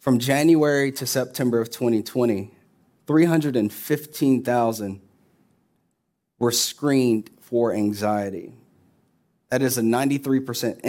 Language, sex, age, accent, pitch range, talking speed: English, male, 30-49, American, 115-150 Hz, 85 wpm